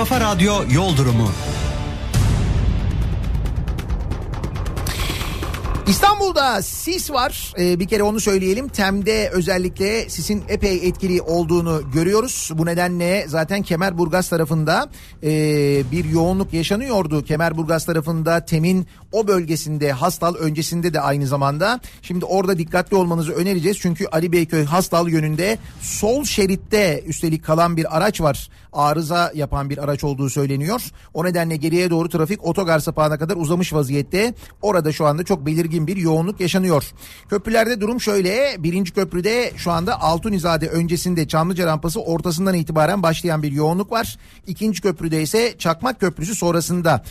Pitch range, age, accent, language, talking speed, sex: 155-195 Hz, 40-59, native, Turkish, 125 wpm, male